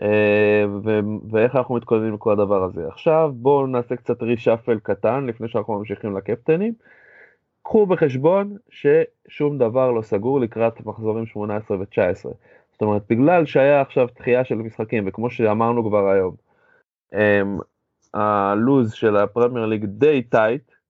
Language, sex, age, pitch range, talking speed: Hebrew, male, 20-39, 110-150 Hz, 135 wpm